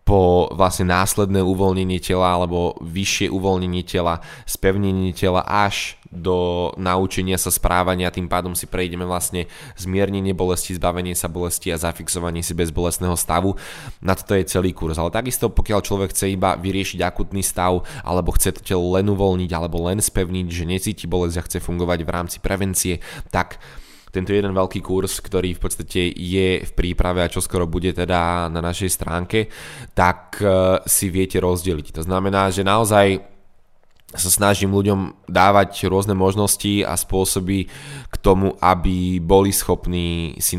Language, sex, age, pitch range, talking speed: Slovak, male, 10-29, 90-100 Hz, 155 wpm